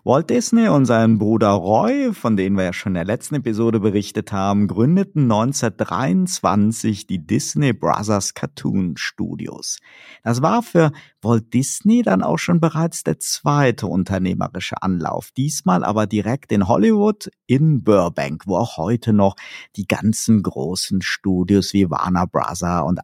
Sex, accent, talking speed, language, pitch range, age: male, German, 145 wpm, German, 100-150 Hz, 50-69